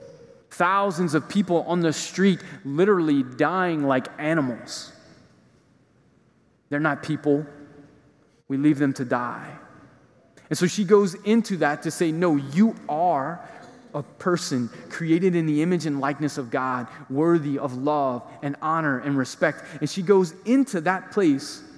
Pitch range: 145-180 Hz